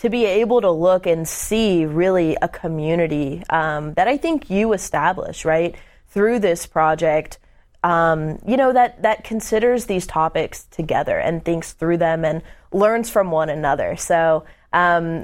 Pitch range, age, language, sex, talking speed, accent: 165-220 Hz, 20-39, English, female, 160 wpm, American